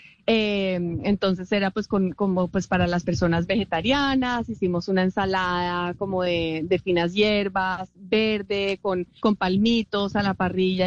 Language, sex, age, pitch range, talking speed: Spanish, female, 30-49, 185-220 Hz, 145 wpm